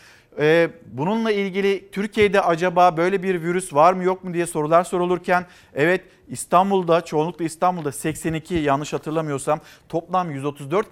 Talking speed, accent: 125 wpm, native